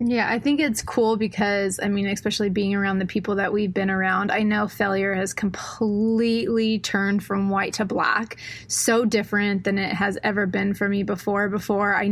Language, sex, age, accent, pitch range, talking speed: English, female, 20-39, American, 195-220 Hz, 195 wpm